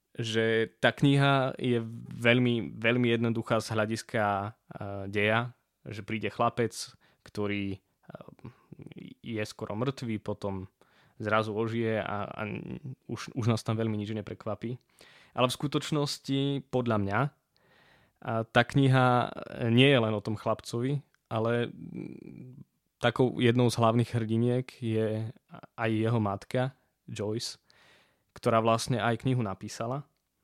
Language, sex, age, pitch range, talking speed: Slovak, male, 20-39, 110-125 Hz, 115 wpm